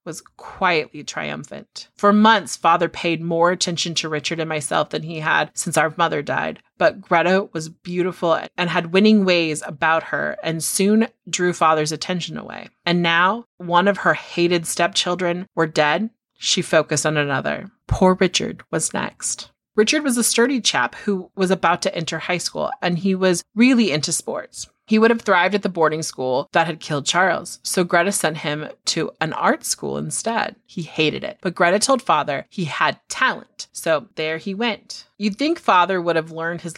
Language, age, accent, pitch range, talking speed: English, 30-49, American, 160-195 Hz, 185 wpm